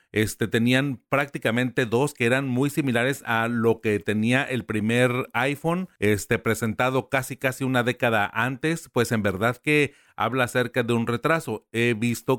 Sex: male